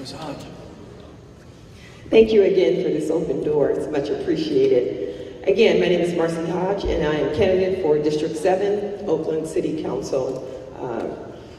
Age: 40-59